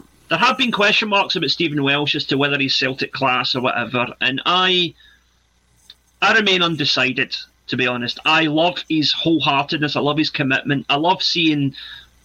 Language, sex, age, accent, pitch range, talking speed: English, male, 30-49, British, 130-155 Hz, 170 wpm